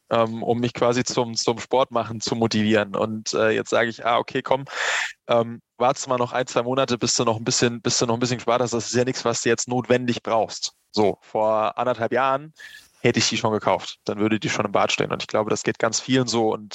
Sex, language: male, German